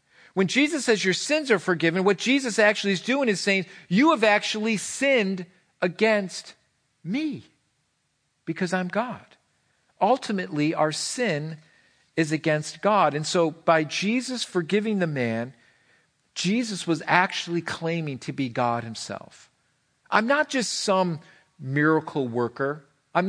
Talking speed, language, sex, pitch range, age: 130 wpm, English, male, 130-190 Hz, 50-69